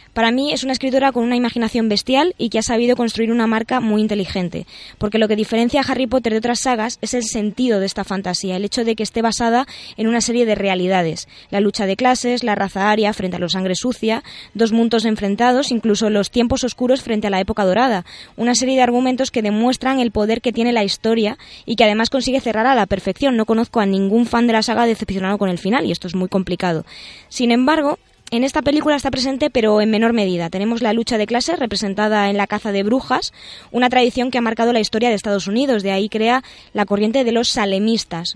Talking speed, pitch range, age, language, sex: 230 wpm, 205-245 Hz, 20-39, Spanish, female